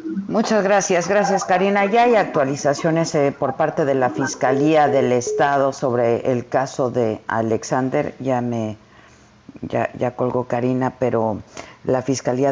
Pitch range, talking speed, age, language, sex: 115-140 Hz, 140 wpm, 50-69, Spanish, female